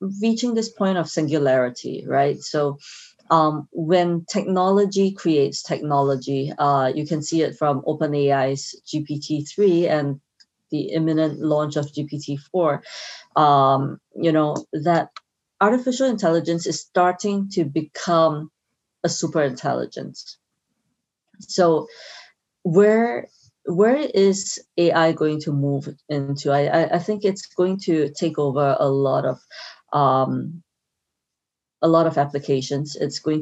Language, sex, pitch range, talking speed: English, female, 140-170 Hz, 120 wpm